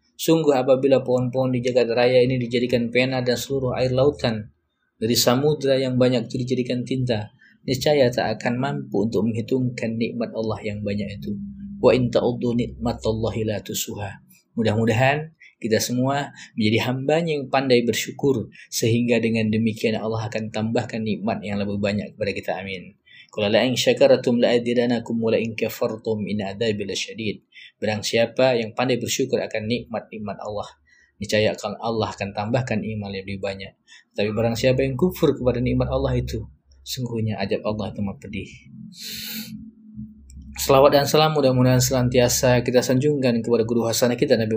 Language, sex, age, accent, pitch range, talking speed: Indonesian, male, 20-39, native, 105-125 Hz, 145 wpm